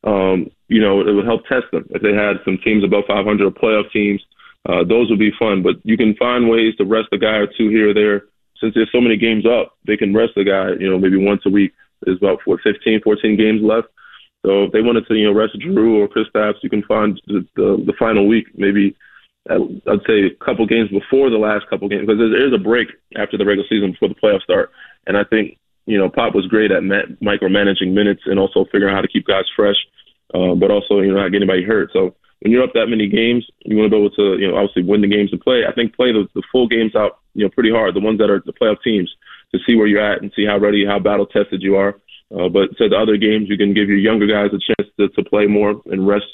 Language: English